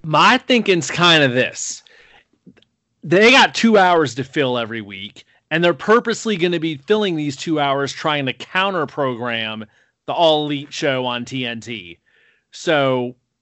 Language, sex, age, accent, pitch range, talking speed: English, male, 30-49, American, 130-200 Hz, 150 wpm